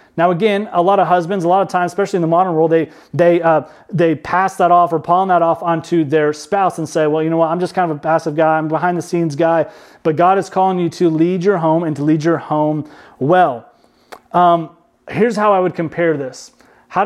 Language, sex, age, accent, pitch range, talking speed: English, male, 30-49, American, 160-190 Hz, 245 wpm